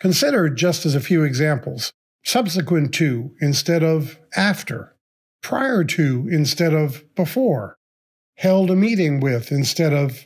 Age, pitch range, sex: 50-69, 140-185 Hz, male